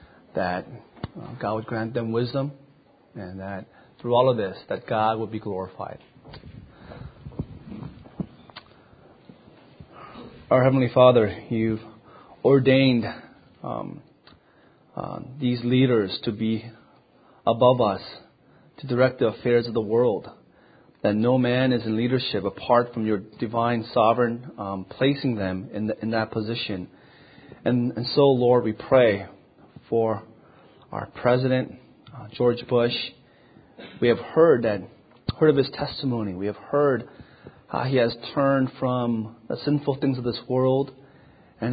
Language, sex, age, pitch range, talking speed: English, male, 30-49, 115-140 Hz, 130 wpm